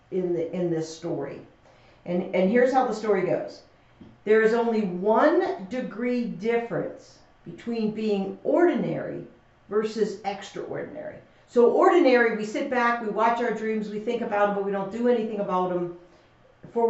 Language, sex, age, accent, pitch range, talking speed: English, female, 50-69, American, 195-245 Hz, 155 wpm